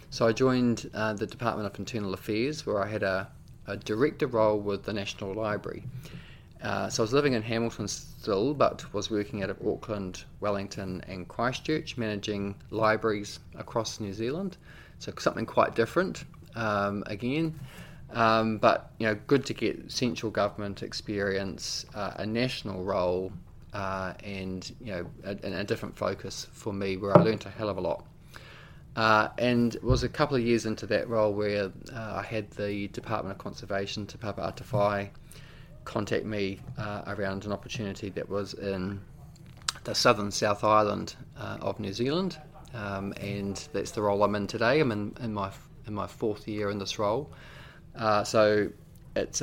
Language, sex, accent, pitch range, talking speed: English, male, Australian, 100-115 Hz, 170 wpm